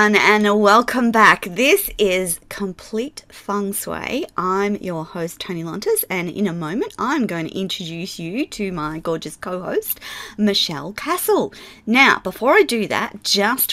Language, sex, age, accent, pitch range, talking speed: English, female, 30-49, Australian, 170-215 Hz, 150 wpm